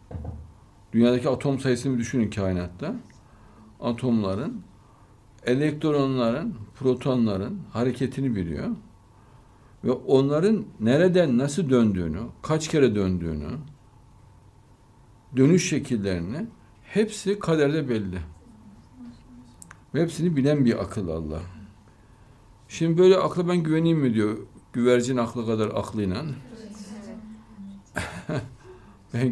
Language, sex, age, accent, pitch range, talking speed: Turkish, male, 60-79, native, 100-145 Hz, 85 wpm